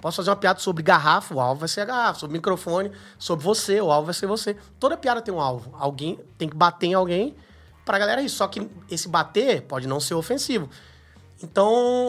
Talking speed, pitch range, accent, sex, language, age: 220 wpm, 155-205 Hz, Brazilian, male, Portuguese, 20-39